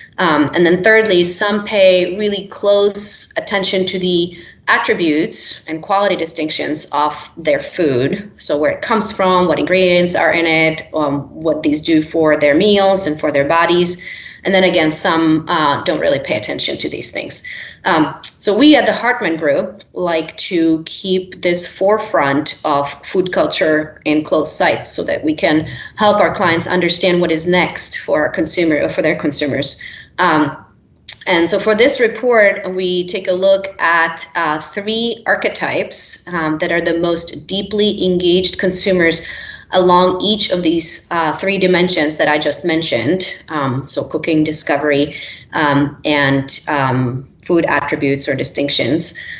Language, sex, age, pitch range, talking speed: English, female, 30-49, 155-190 Hz, 160 wpm